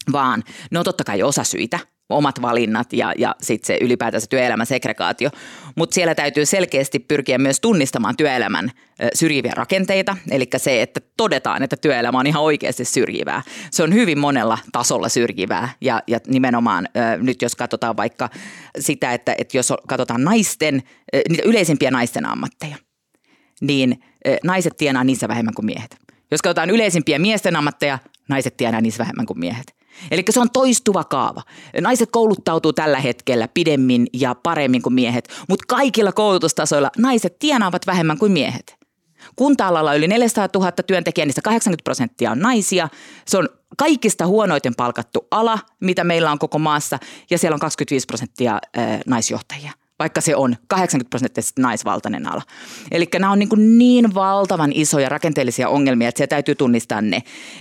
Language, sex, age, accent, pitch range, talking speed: Finnish, female, 30-49, native, 130-195 Hz, 155 wpm